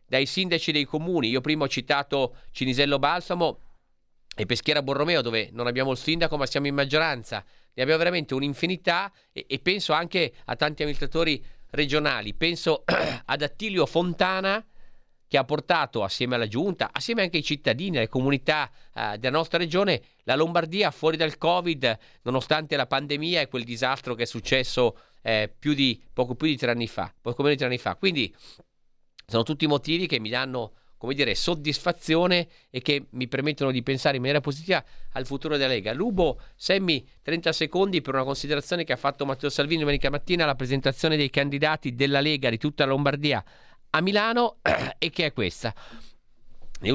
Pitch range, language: 130-160 Hz, Italian